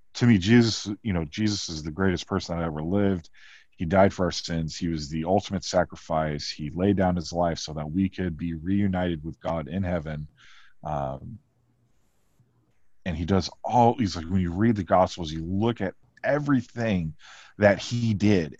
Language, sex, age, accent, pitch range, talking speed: English, male, 40-59, American, 85-110 Hz, 185 wpm